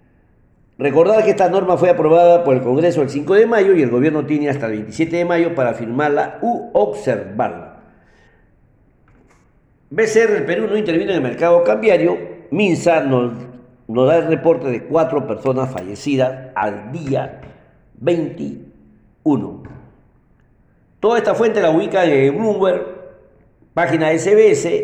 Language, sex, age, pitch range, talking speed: Spanish, male, 50-69, 125-170 Hz, 140 wpm